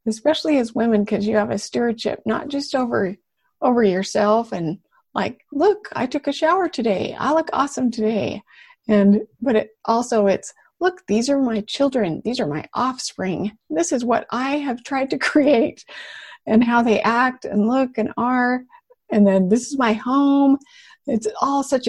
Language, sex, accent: English, female, American